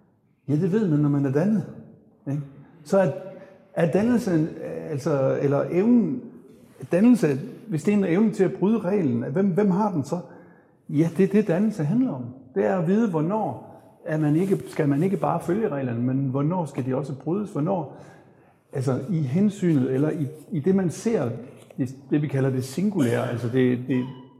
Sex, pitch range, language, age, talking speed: male, 135-180 Hz, Danish, 60-79, 185 wpm